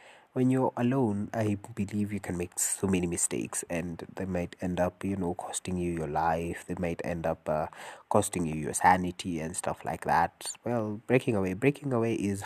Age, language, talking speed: 20-39, English, 195 wpm